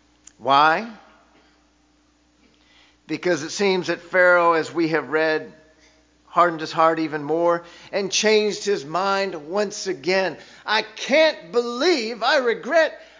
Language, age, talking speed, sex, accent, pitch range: English, 50-69, 120 wpm, male, American, 165-265 Hz